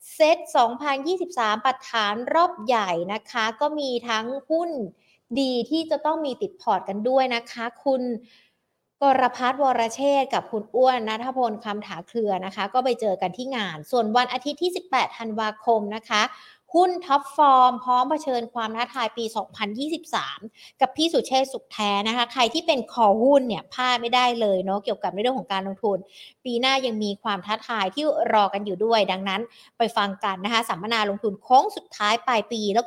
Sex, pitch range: female, 215-275 Hz